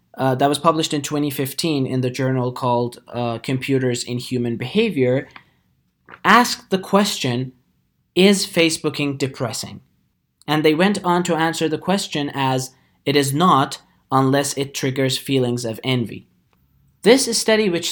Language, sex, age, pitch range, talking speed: English, male, 20-39, 125-180 Hz, 140 wpm